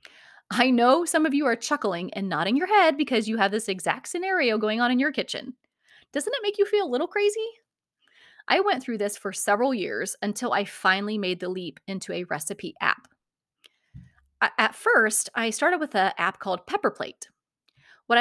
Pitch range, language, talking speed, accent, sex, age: 195-265 Hz, English, 190 wpm, American, female, 30-49